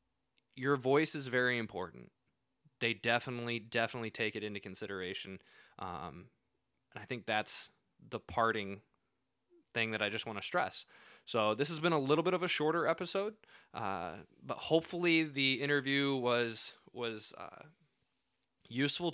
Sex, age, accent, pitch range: male, 20-39, American, 115-145 Hz